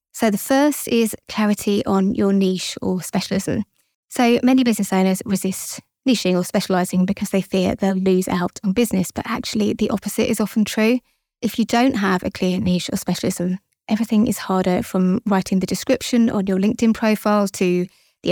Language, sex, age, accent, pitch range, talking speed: English, female, 20-39, British, 190-230 Hz, 180 wpm